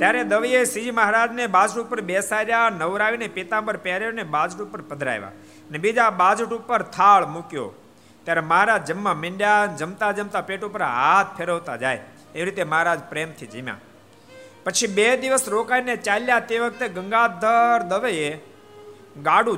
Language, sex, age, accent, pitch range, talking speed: Gujarati, male, 50-69, native, 140-225 Hz, 70 wpm